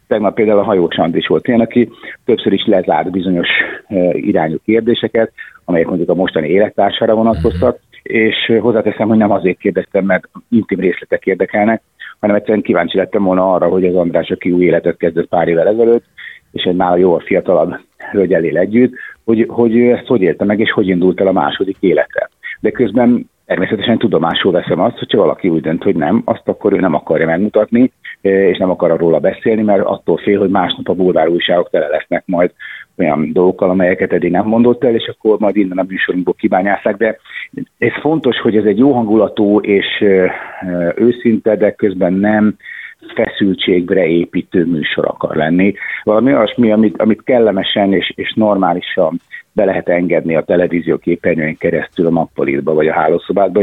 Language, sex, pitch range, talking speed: Hungarian, male, 90-115 Hz, 175 wpm